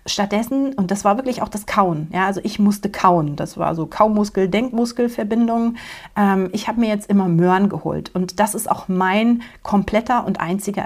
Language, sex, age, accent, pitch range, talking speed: German, female, 40-59, German, 180-220 Hz, 190 wpm